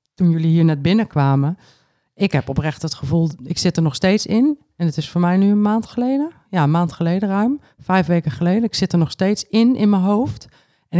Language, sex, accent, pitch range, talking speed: Dutch, female, Dutch, 150-195 Hz, 235 wpm